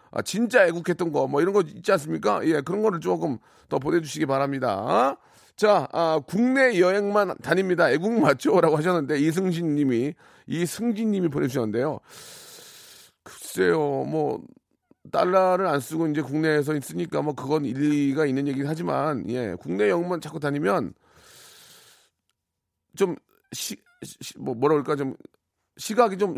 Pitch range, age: 135-185 Hz, 40-59